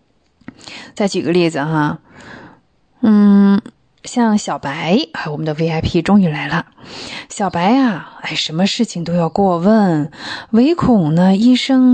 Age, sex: 20-39, female